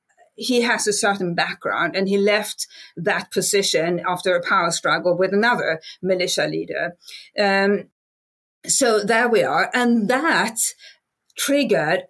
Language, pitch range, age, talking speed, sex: English, 175-215 Hz, 40-59, 130 wpm, female